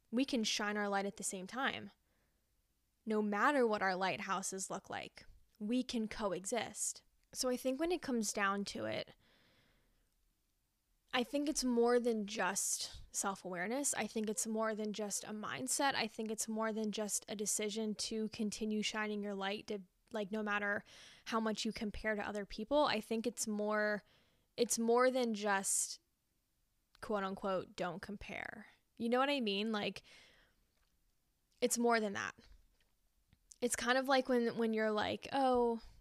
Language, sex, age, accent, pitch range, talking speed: English, female, 10-29, American, 205-240 Hz, 160 wpm